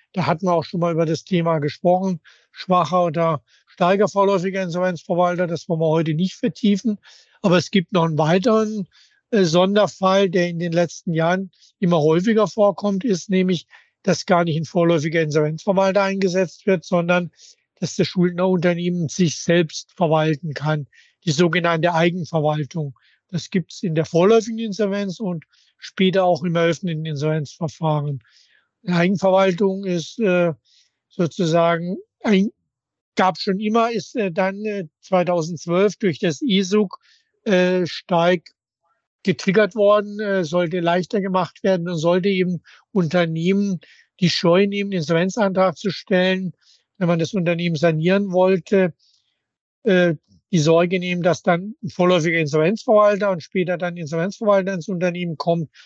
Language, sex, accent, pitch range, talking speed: German, male, German, 170-195 Hz, 135 wpm